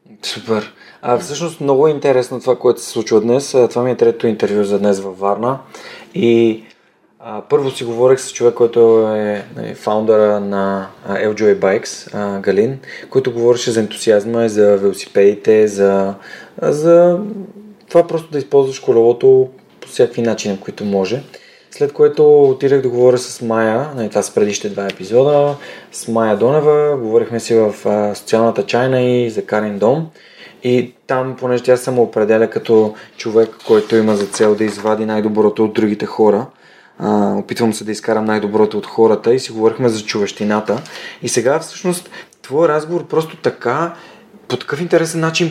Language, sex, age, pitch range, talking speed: Bulgarian, male, 20-39, 110-135 Hz, 160 wpm